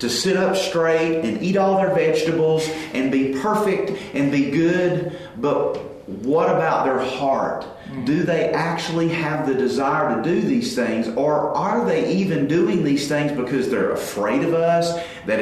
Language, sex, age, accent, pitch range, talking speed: English, male, 40-59, American, 130-165 Hz, 165 wpm